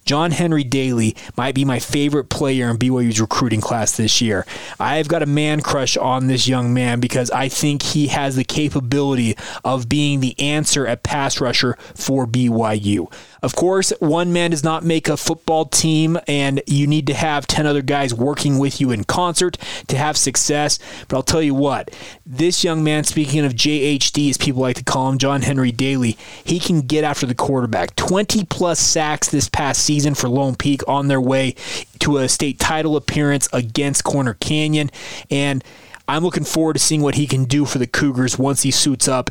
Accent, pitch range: American, 130-155 Hz